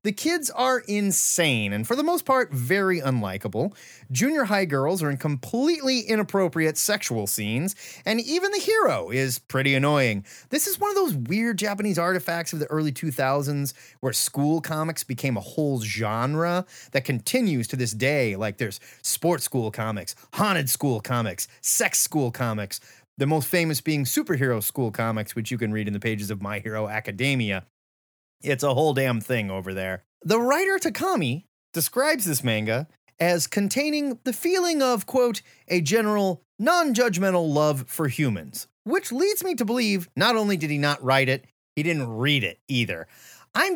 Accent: American